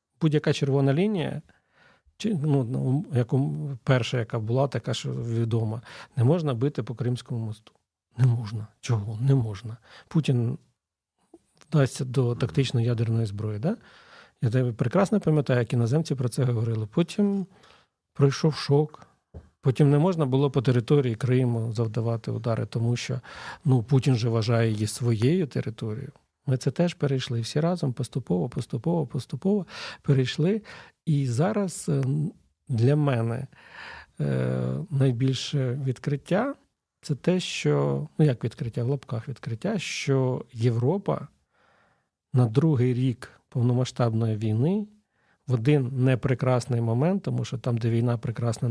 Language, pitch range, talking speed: Ukrainian, 115-145 Hz, 125 wpm